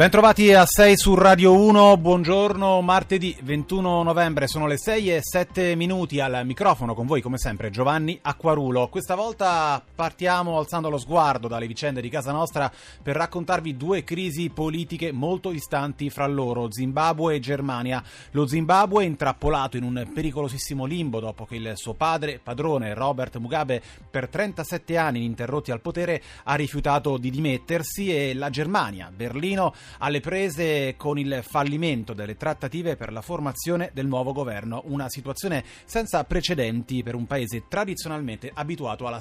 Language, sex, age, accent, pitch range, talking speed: Italian, male, 30-49, native, 125-170 Hz, 155 wpm